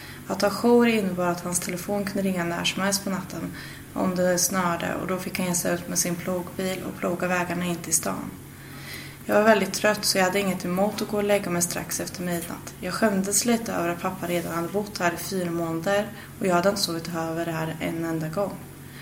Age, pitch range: 20-39, 170-200 Hz